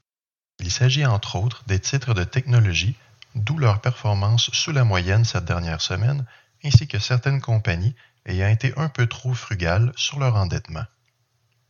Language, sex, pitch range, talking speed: French, male, 100-125 Hz, 155 wpm